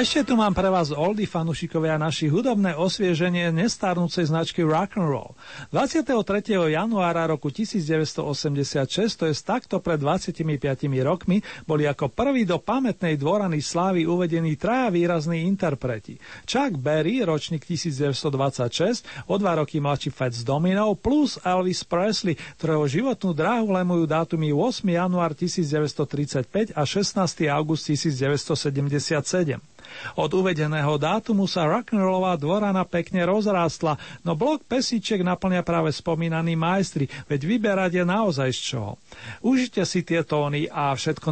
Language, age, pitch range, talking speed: Slovak, 40-59, 150-190 Hz, 125 wpm